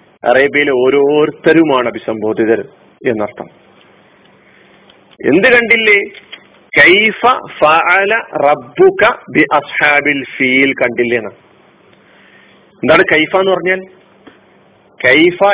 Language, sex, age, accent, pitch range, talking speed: Malayalam, male, 40-59, native, 155-255 Hz, 40 wpm